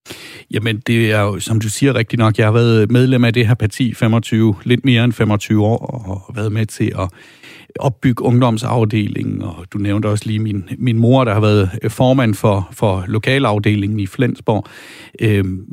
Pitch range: 105-125 Hz